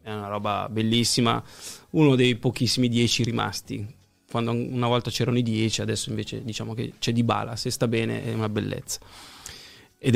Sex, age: male, 20-39